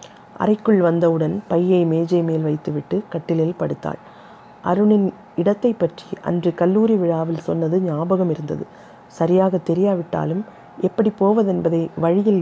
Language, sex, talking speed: Tamil, female, 105 wpm